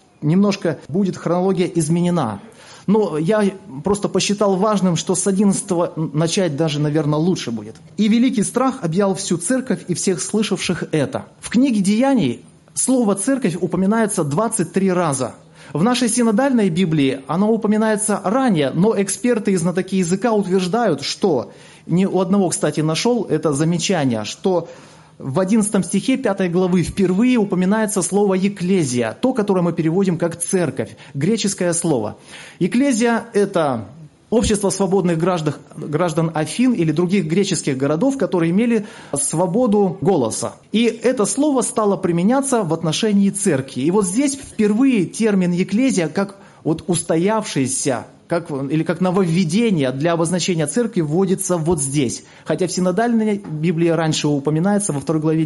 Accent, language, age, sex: native, Russian, 30-49, male